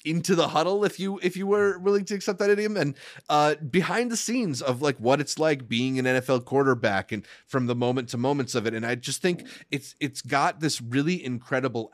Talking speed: 225 wpm